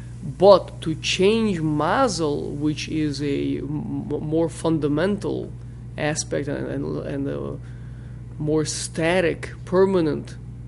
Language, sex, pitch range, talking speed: English, male, 120-170 Hz, 100 wpm